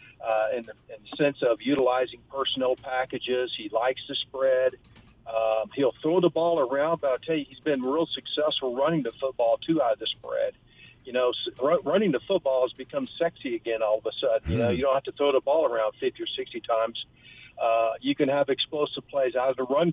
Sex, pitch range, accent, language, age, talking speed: male, 120-155 Hz, American, English, 50-69, 225 wpm